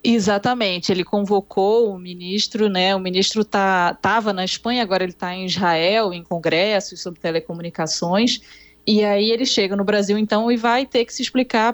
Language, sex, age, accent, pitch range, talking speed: Portuguese, female, 20-39, Brazilian, 185-240 Hz, 175 wpm